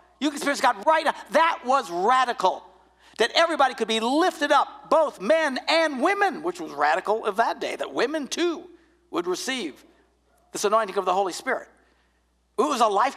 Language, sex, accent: English, male, American